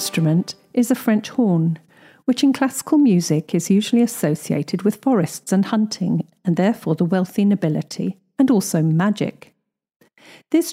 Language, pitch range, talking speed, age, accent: English, 180-245 Hz, 140 wpm, 50-69, British